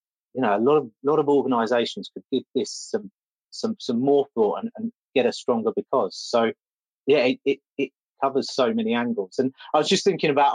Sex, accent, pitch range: male, British, 125-185 Hz